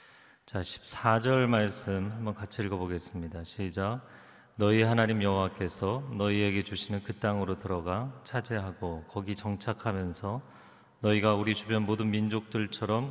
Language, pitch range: Korean, 95-115 Hz